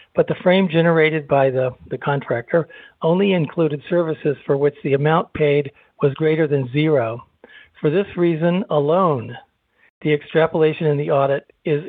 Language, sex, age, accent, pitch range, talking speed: English, male, 60-79, American, 140-165 Hz, 150 wpm